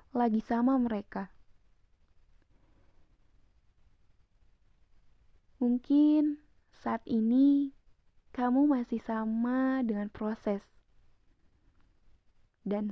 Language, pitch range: Indonesian, 200-245 Hz